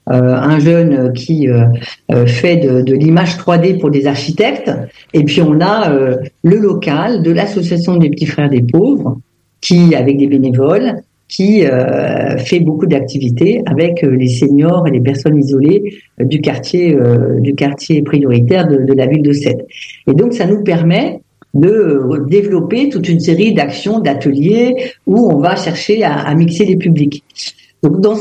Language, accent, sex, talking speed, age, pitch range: French, French, female, 170 wpm, 50-69, 135-175 Hz